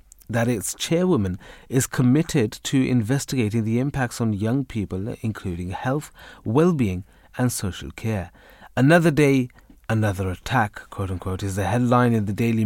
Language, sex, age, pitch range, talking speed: English, male, 30-49, 105-135 Hz, 135 wpm